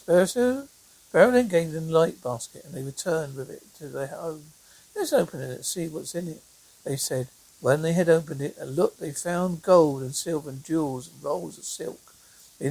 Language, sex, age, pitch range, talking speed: English, male, 60-79, 145-185 Hz, 205 wpm